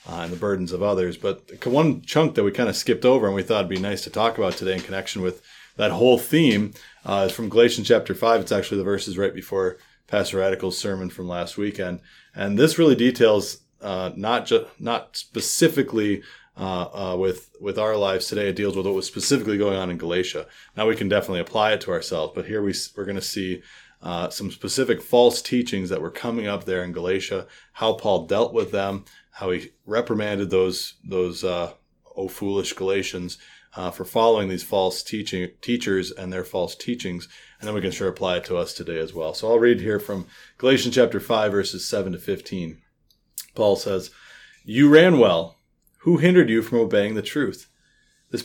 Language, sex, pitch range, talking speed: English, male, 95-115 Hz, 205 wpm